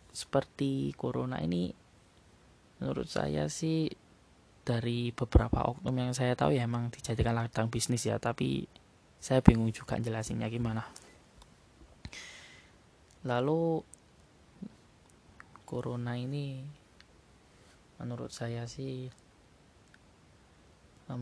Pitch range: 110-125 Hz